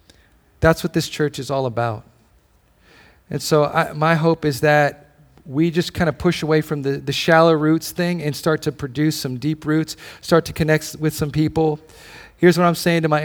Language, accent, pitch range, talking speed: English, American, 140-170 Hz, 205 wpm